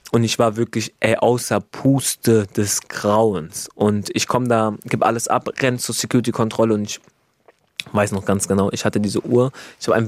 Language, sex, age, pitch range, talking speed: German, male, 20-39, 100-120 Hz, 190 wpm